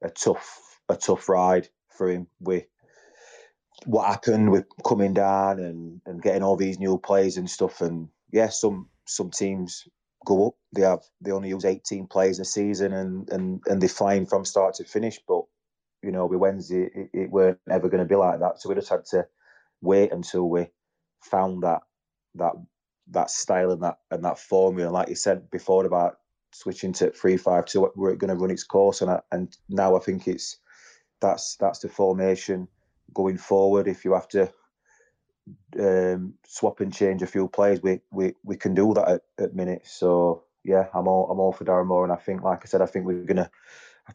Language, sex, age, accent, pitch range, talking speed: English, male, 20-39, British, 90-100 Hz, 200 wpm